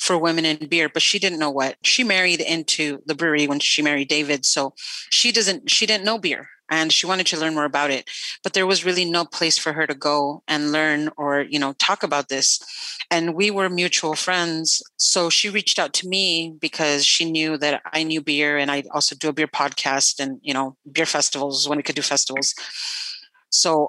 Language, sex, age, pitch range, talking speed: English, female, 30-49, 150-185 Hz, 220 wpm